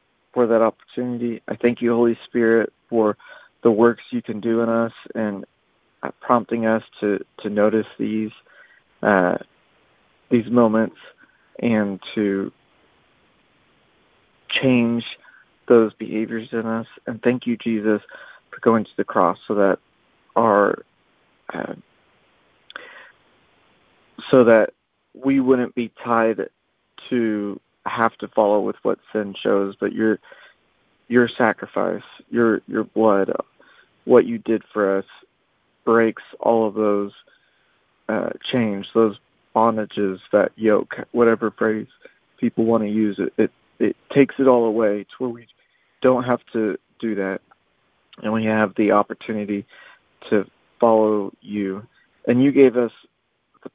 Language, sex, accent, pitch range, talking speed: English, male, American, 105-120 Hz, 130 wpm